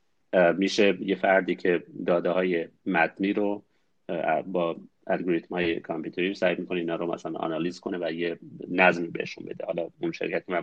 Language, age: Persian, 30-49